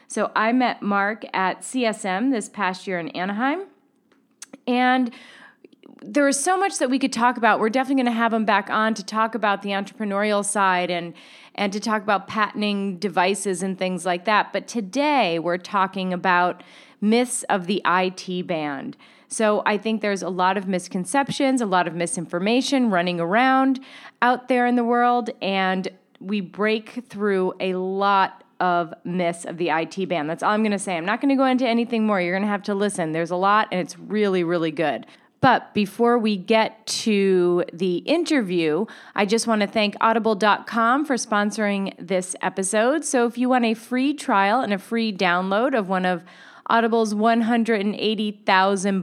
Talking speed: 180 wpm